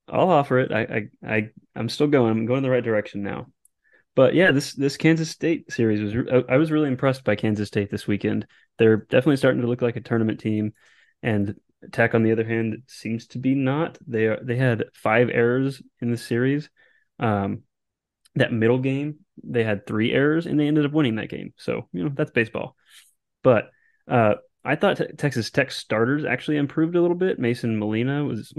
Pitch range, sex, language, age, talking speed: 105-135 Hz, male, English, 20-39, 205 wpm